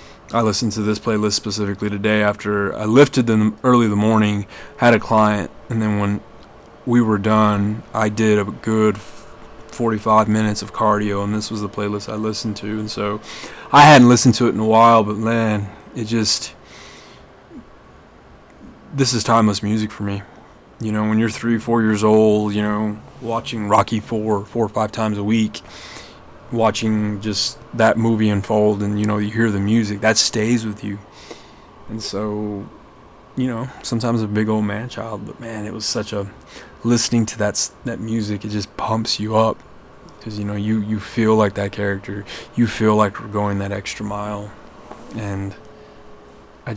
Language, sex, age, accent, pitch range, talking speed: English, male, 20-39, American, 105-115 Hz, 180 wpm